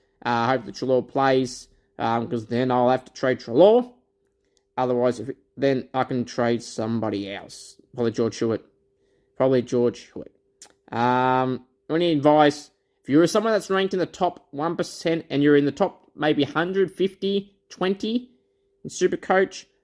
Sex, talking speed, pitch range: male, 160 wpm, 125-200 Hz